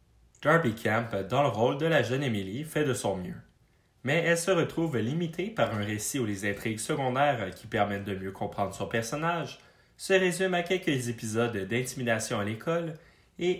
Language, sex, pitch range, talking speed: English, male, 105-160 Hz, 180 wpm